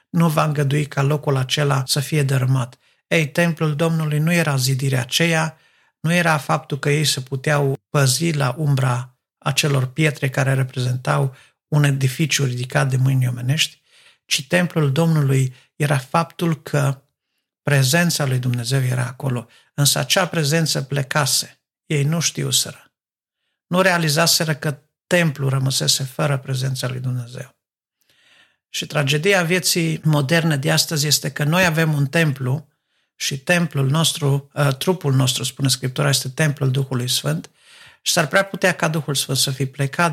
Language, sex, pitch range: Romanian, male, 135-160 Hz